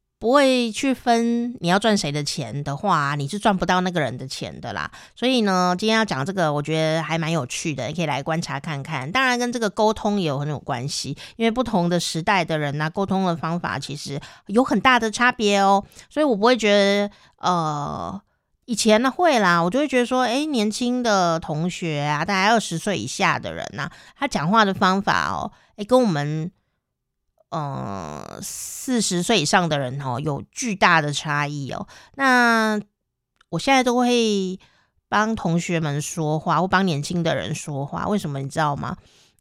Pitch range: 155-225 Hz